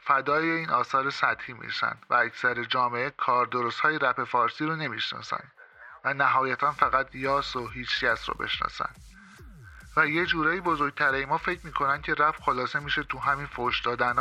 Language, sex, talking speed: Persian, male, 155 wpm